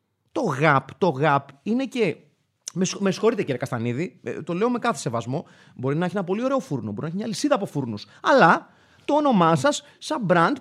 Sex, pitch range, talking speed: male, 145-245 Hz, 190 wpm